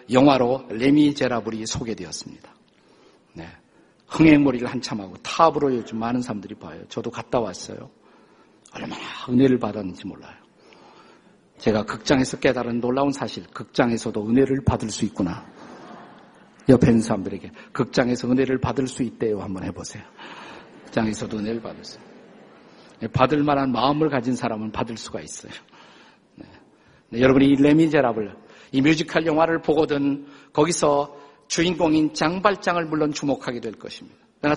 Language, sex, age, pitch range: Korean, male, 50-69, 120-160 Hz